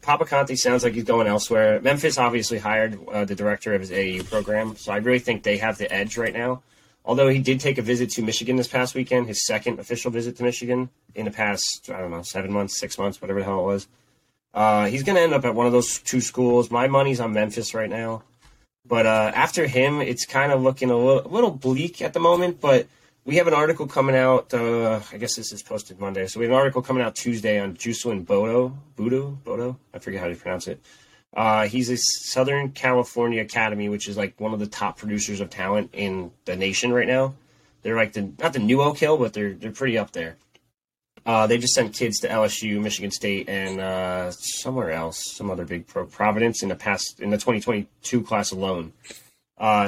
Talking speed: 230 wpm